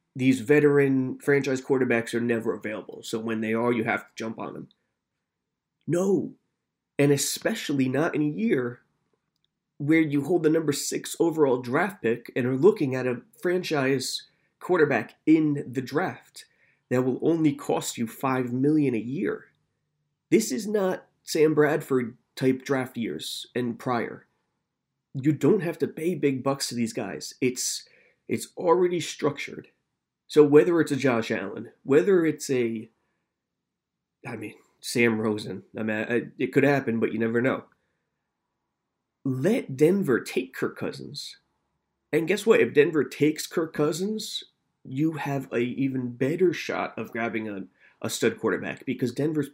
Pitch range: 120-155 Hz